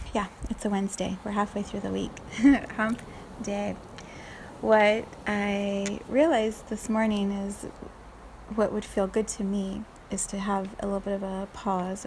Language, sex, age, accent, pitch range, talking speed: English, female, 30-49, American, 195-215 Hz, 155 wpm